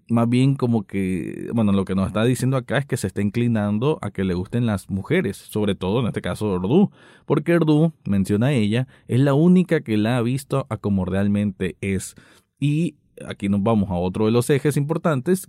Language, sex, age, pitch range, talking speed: Spanish, male, 20-39, 100-135 Hz, 210 wpm